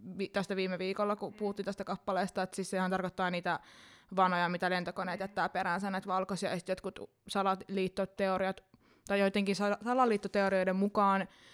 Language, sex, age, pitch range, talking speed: Finnish, female, 20-39, 180-200 Hz, 140 wpm